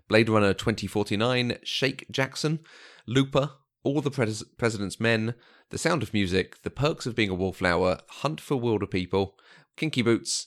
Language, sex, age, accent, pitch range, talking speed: English, male, 30-49, British, 100-130 Hz, 150 wpm